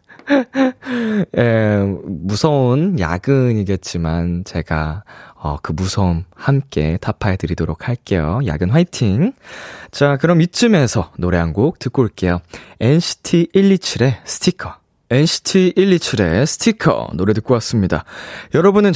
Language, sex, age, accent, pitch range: Korean, male, 20-39, native, 100-170 Hz